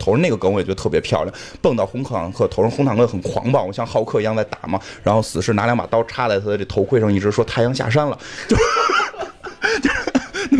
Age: 20-39